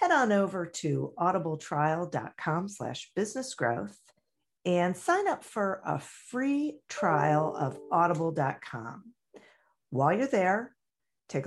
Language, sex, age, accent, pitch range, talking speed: English, female, 50-69, American, 145-210 Hz, 100 wpm